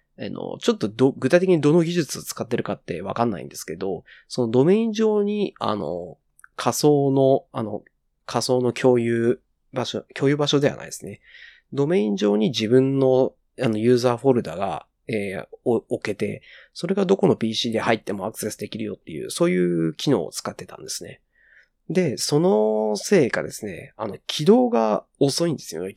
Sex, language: male, Japanese